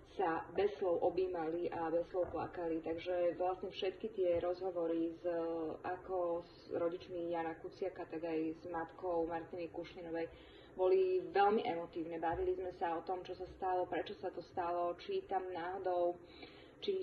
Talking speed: 150 wpm